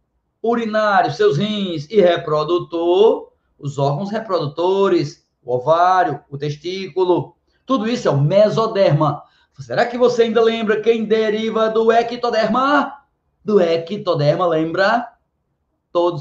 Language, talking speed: Portuguese, 110 wpm